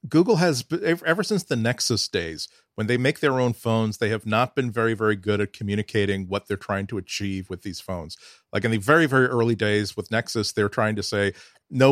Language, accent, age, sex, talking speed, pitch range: English, American, 40-59, male, 225 wpm, 105-135 Hz